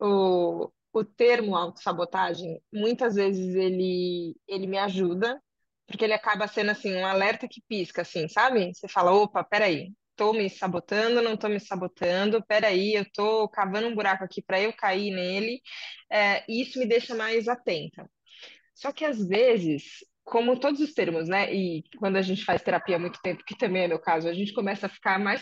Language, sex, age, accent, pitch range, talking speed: Portuguese, female, 20-39, Brazilian, 190-240 Hz, 185 wpm